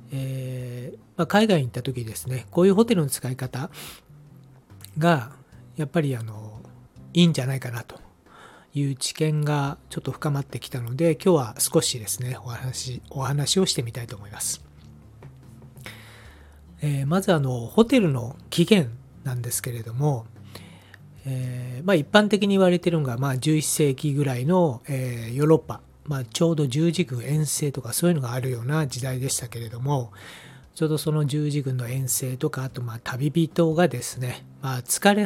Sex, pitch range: male, 125-165 Hz